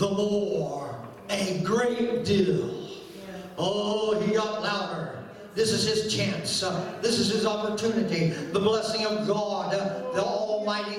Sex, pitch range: male, 185-275 Hz